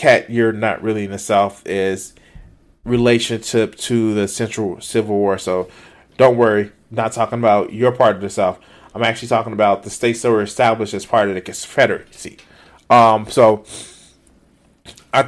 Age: 30-49